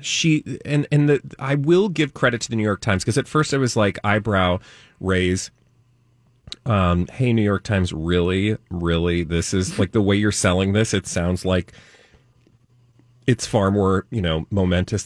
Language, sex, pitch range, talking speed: English, male, 95-120 Hz, 180 wpm